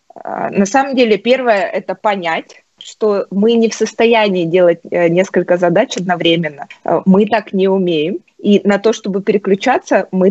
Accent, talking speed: native, 145 wpm